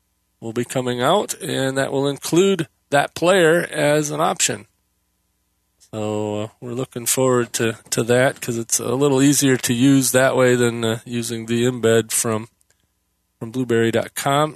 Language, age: English, 40-59